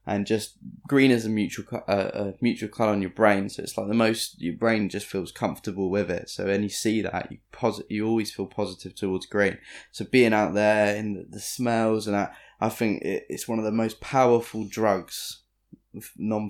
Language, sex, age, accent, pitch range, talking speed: English, male, 10-29, British, 100-110 Hz, 205 wpm